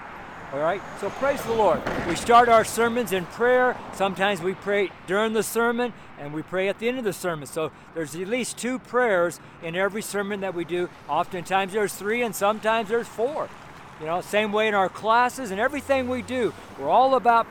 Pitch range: 190-240 Hz